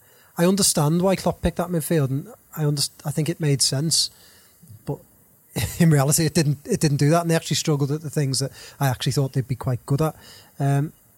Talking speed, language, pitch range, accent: 220 wpm, English, 135-155 Hz, British